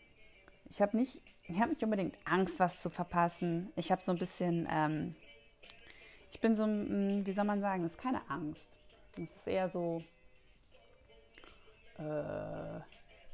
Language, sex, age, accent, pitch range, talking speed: German, female, 30-49, German, 165-200 Hz, 145 wpm